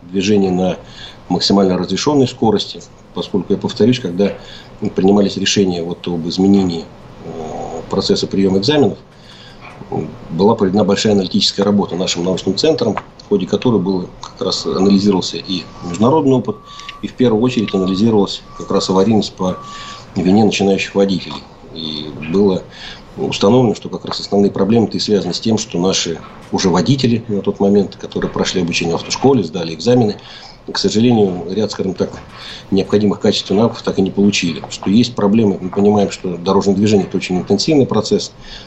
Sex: male